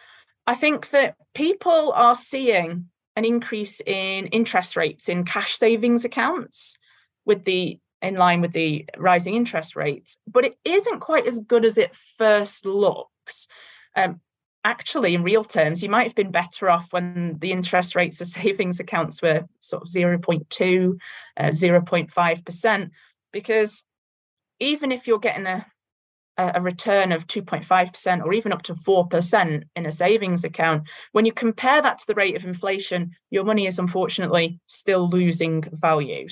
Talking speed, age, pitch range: 155 wpm, 30-49, 170-220 Hz